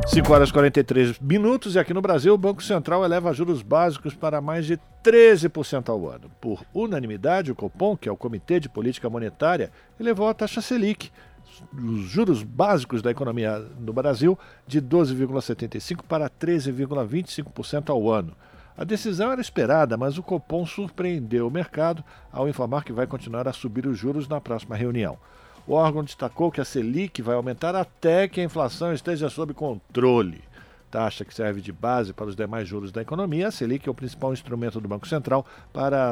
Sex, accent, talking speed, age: male, Brazilian, 180 wpm, 60-79